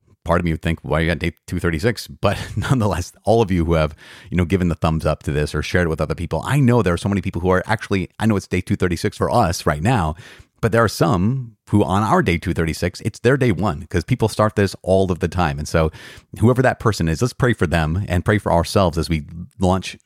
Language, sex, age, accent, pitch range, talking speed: English, male, 30-49, American, 85-120 Hz, 265 wpm